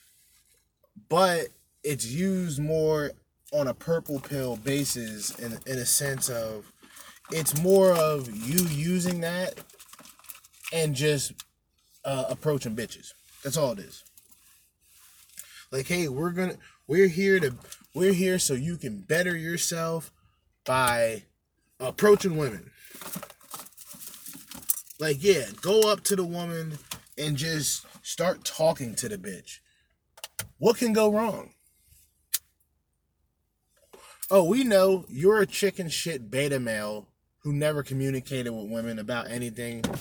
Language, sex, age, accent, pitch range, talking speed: English, male, 20-39, American, 125-185 Hz, 120 wpm